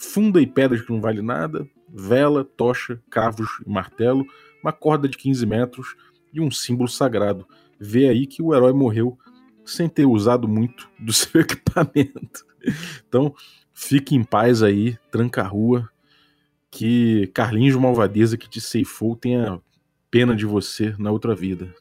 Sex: male